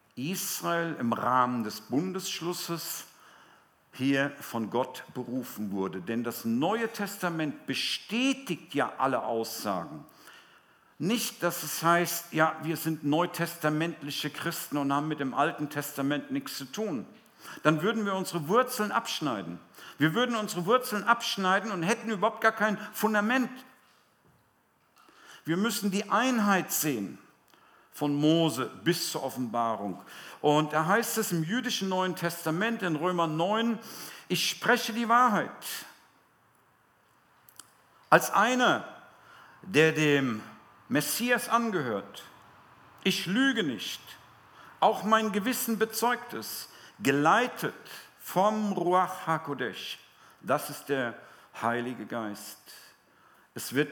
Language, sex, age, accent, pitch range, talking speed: German, male, 50-69, German, 140-215 Hz, 115 wpm